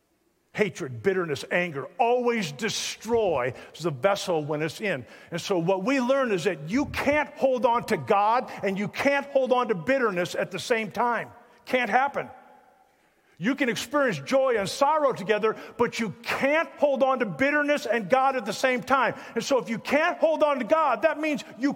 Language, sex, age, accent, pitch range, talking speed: English, male, 50-69, American, 205-280 Hz, 190 wpm